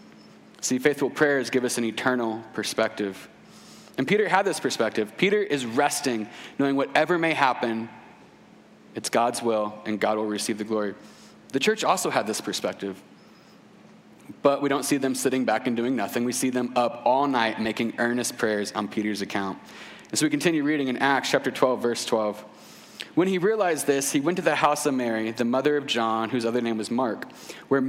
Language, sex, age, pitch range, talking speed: English, male, 30-49, 125-190 Hz, 190 wpm